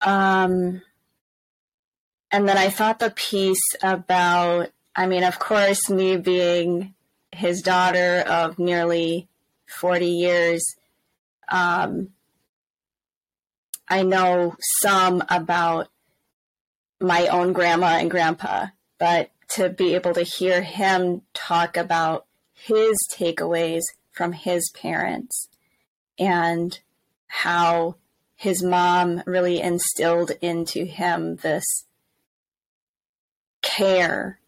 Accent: American